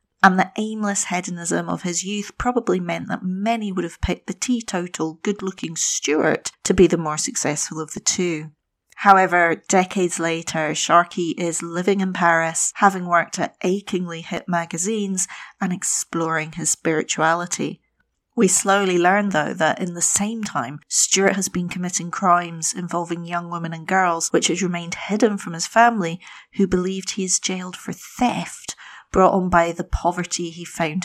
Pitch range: 165-195 Hz